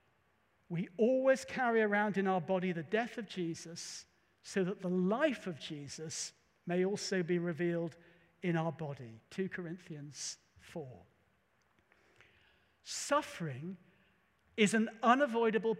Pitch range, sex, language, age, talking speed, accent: 170-225 Hz, male, English, 60-79, 120 wpm, British